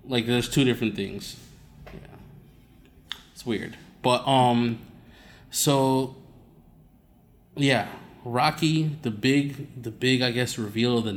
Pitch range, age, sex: 115-130 Hz, 20-39, male